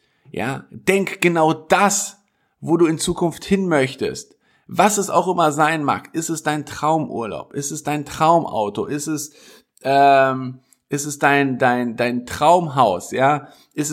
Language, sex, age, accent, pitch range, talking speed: German, male, 50-69, German, 135-165 Hz, 150 wpm